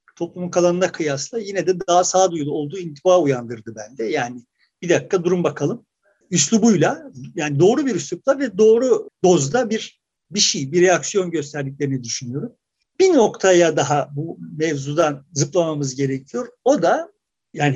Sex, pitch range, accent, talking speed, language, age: male, 155-220 Hz, native, 140 wpm, Turkish, 50-69